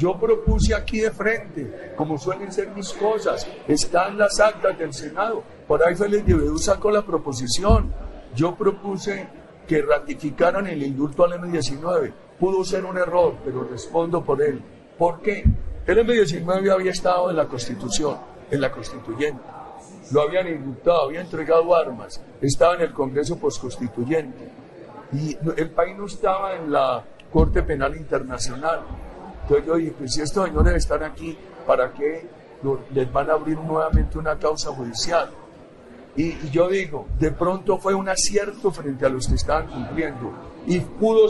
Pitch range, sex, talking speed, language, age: 140-190 Hz, male, 155 wpm, Spanish, 60-79